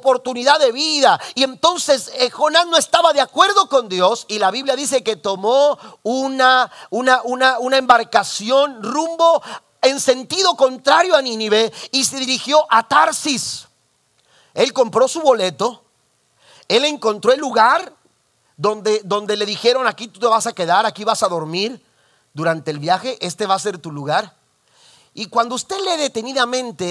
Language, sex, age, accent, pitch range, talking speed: Spanish, male, 40-59, Mexican, 160-255 Hz, 160 wpm